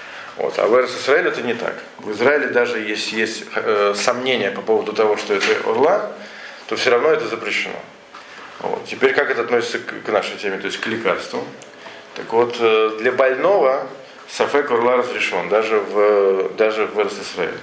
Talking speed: 165 wpm